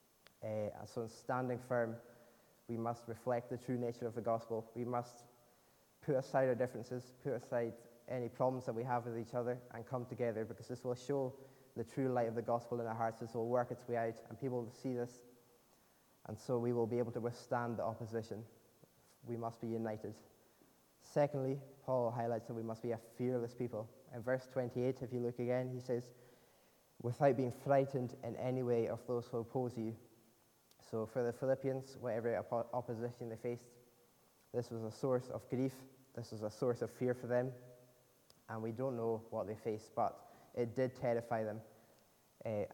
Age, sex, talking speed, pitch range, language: 20-39, male, 190 wpm, 115-125 Hz, English